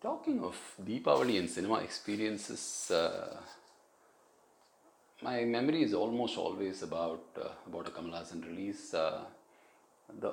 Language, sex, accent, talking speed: English, male, Indian, 115 wpm